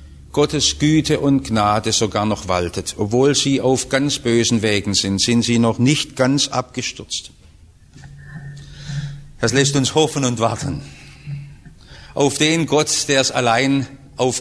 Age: 50-69